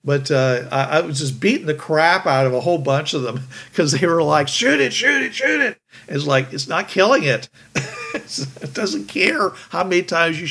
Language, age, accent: English, 50-69, American